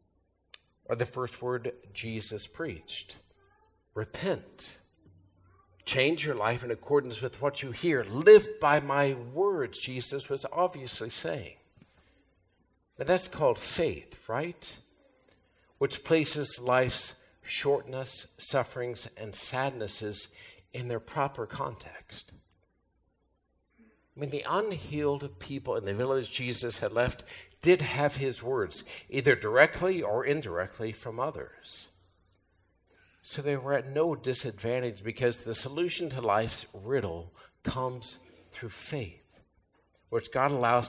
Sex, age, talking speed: male, 50-69, 115 wpm